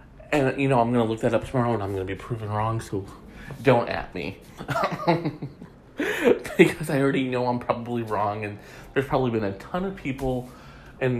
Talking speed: 200 wpm